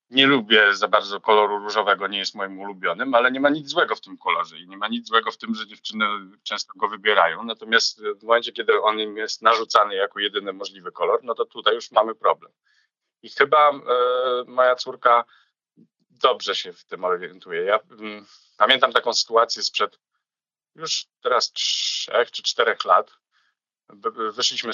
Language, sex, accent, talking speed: Polish, male, native, 165 wpm